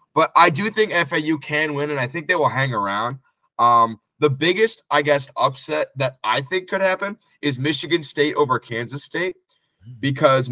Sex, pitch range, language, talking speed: male, 115-150 Hz, English, 185 wpm